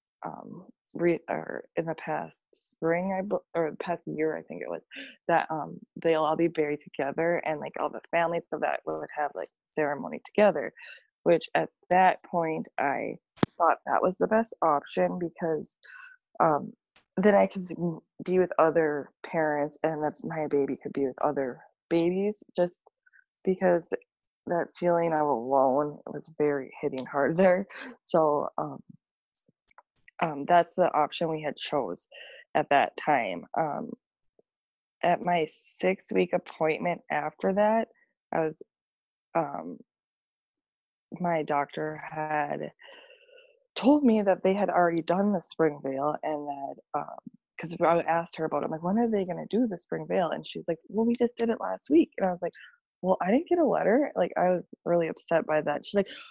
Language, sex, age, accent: English, female, 20-39, American